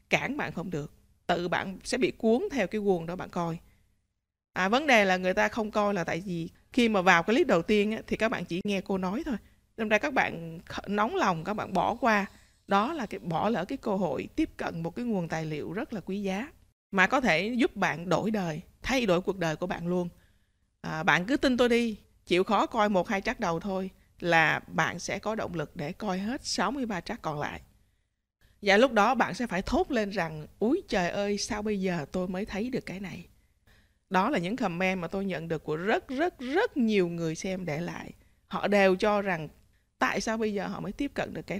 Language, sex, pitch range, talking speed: Vietnamese, female, 170-220 Hz, 235 wpm